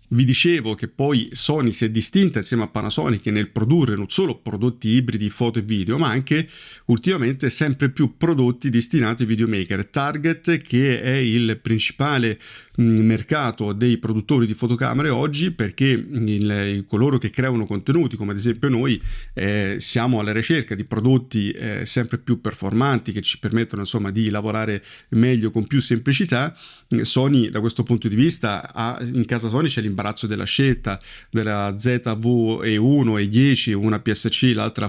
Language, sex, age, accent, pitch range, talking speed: Italian, male, 40-59, native, 110-125 Hz, 160 wpm